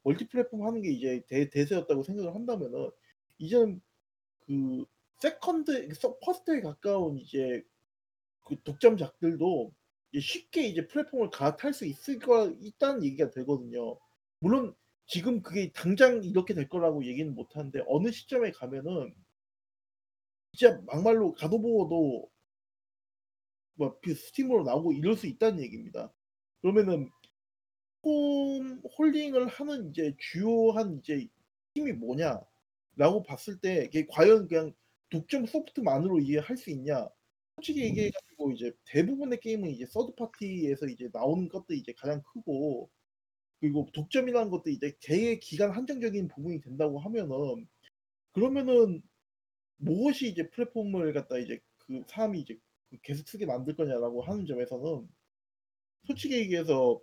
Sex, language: male, Korean